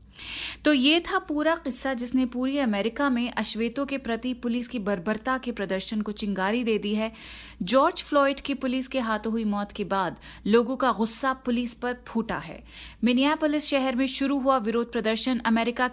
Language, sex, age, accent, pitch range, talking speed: Hindi, female, 30-49, native, 215-265 Hz, 175 wpm